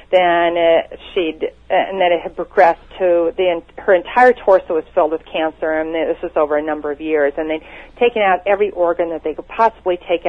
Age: 40-59